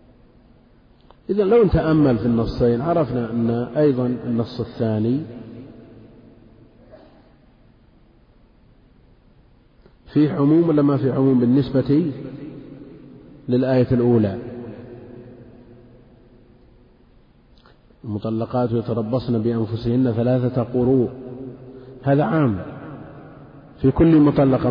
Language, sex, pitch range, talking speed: Arabic, male, 115-135 Hz, 70 wpm